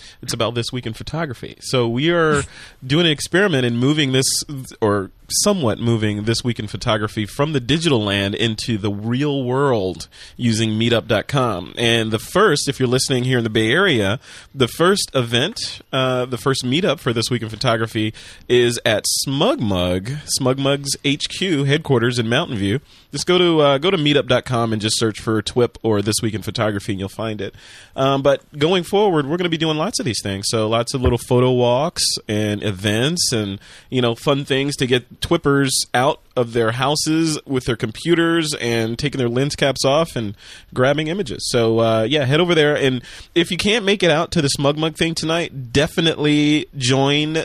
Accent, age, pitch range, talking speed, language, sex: American, 30-49, 110-145 Hz, 190 wpm, English, male